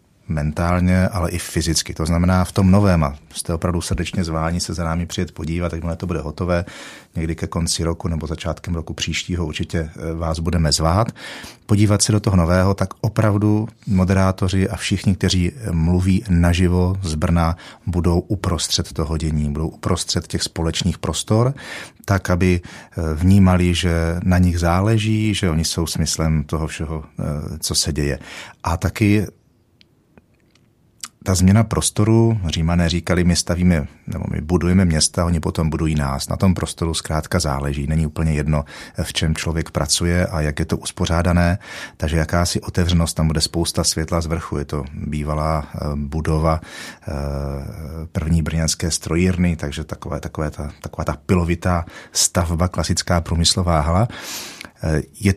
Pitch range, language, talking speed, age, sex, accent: 80-95 Hz, Czech, 145 wpm, 40-59, male, native